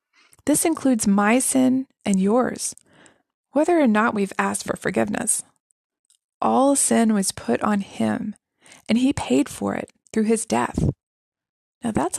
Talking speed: 145 wpm